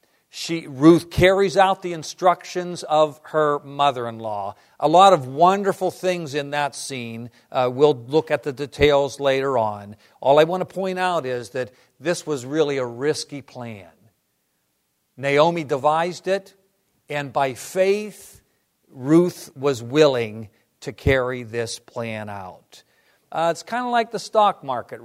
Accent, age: American, 50-69